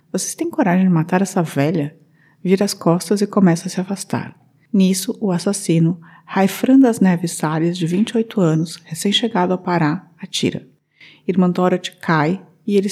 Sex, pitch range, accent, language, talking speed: female, 165-200 Hz, Brazilian, Portuguese, 160 wpm